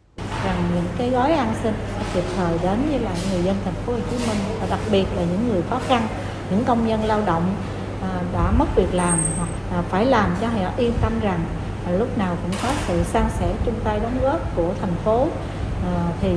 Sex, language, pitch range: female, Vietnamese, 165-250 Hz